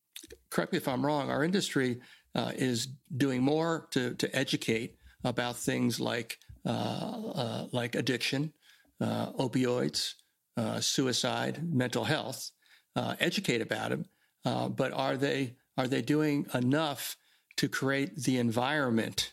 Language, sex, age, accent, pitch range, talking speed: English, male, 60-79, American, 125-160 Hz, 135 wpm